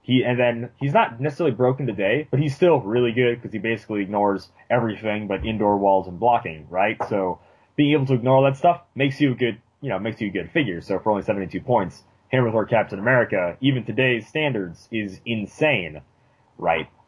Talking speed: 205 wpm